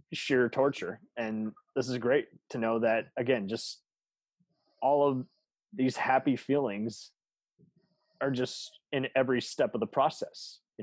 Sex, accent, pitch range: male, American, 115-145 Hz